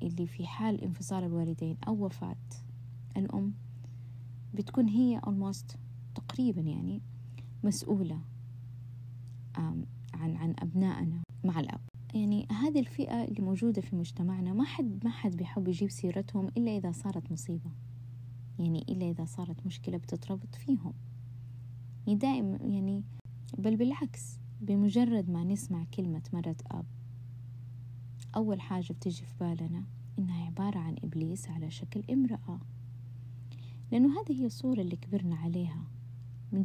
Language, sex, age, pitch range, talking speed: Arabic, female, 20-39, 120-195 Hz, 120 wpm